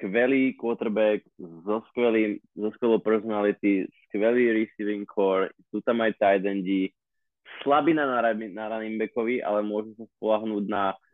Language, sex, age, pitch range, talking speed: Slovak, male, 20-39, 105-120 Hz, 140 wpm